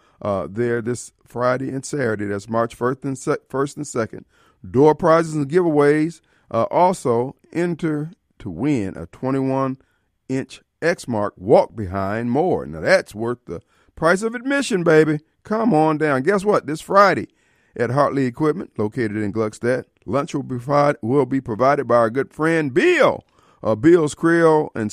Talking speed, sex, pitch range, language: 150 wpm, male, 120-160 Hz, English